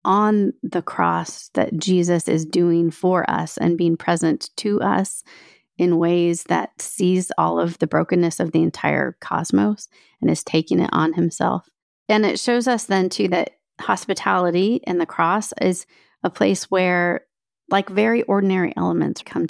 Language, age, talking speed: English, 40-59, 160 wpm